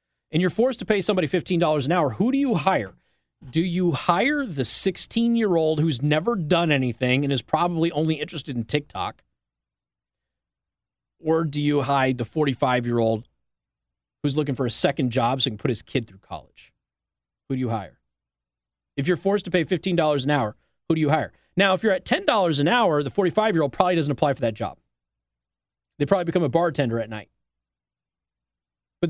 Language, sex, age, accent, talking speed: English, male, 30-49, American, 180 wpm